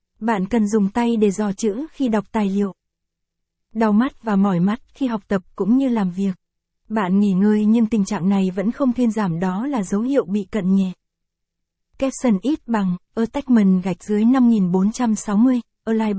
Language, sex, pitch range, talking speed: Vietnamese, female, 200-235 Hz, 180 wpm